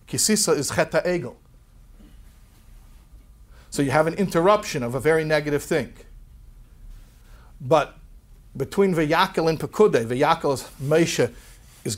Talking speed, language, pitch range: 115 wpm, English, 140-185 Hz